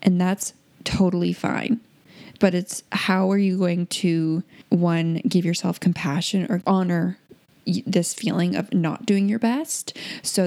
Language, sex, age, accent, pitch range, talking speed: English, female, 10-29, American, 175-225 Hz, 145 wpm